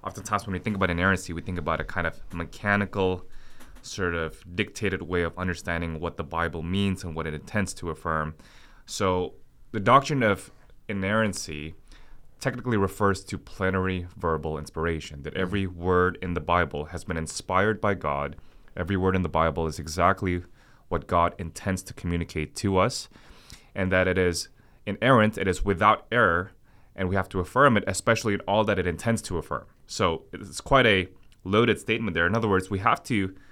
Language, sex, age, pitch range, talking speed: English, male, 20-39, 85-105 Hz, 180 wpm